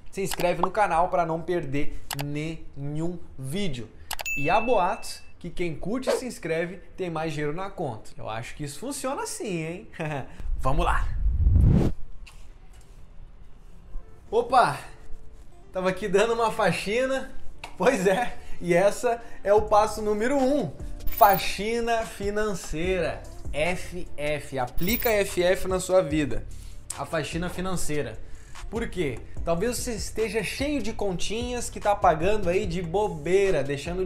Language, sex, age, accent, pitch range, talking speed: Portuguese, male, 20-39, Brazilian, 150-210 Hz, 130 wpm